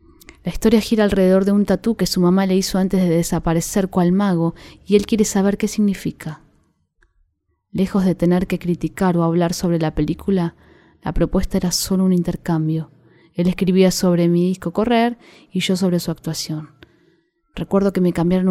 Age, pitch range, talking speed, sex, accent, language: 20-39, 165-190 Hz, 175 wpm, female, Argentinian, Spanish